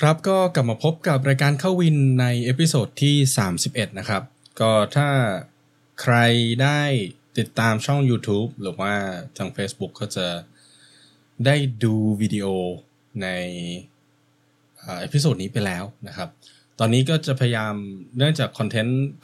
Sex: male